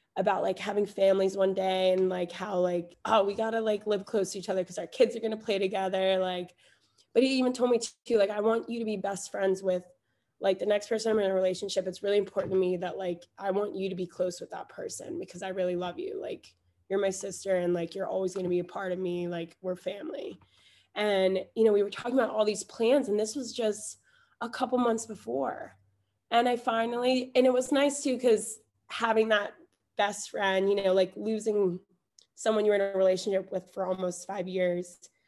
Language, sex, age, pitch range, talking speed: English, female, 20-39, 185-215 Hz, 235 wpm